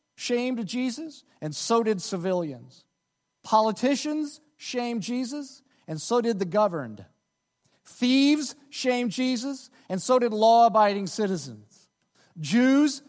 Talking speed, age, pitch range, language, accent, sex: 105 wpm, 40-59, 180-270 Hz, English, American, male